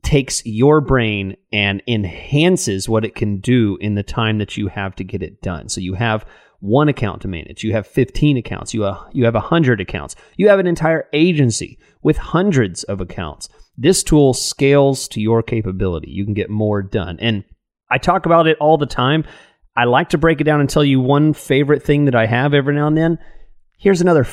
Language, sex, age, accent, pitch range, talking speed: English, male, 30-49, American, 105-145 Hz, 210 wpm